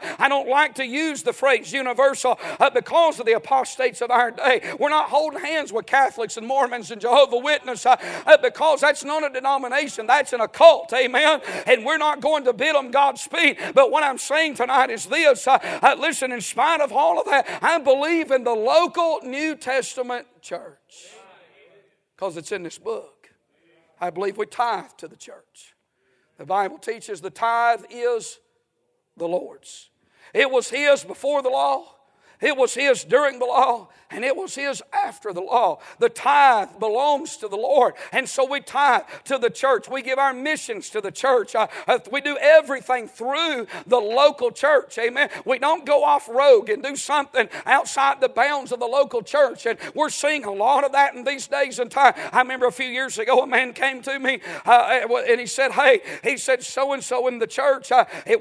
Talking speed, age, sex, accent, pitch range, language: 195 wpm, 50-69, male, American, 245-295 Hz, English